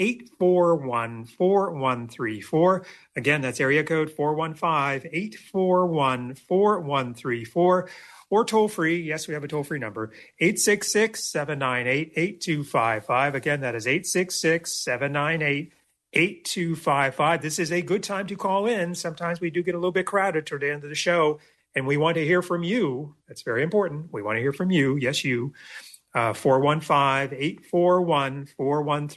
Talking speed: 120 wpm